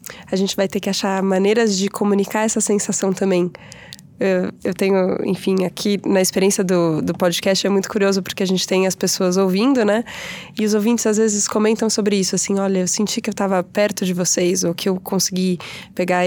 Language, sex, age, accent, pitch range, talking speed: Portuguese, female, 20-39, Brazilian, 185-210 Hz, 205 wpm